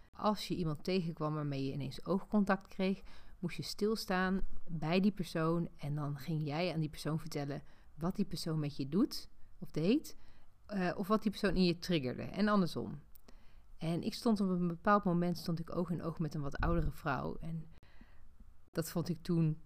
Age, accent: 40-59, Dutch